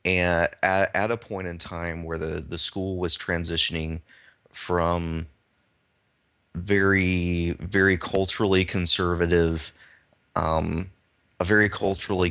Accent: American